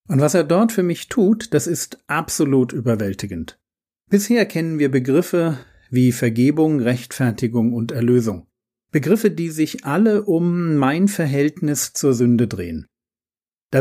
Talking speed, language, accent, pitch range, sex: 135 wpm, German, German, 120-170 Hz, male